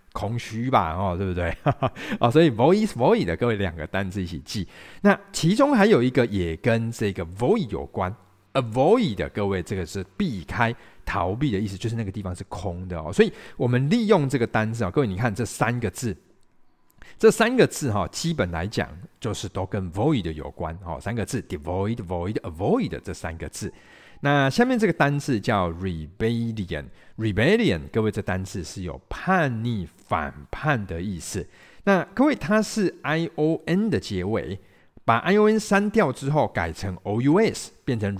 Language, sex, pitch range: Chinese, male, 95-135 Hz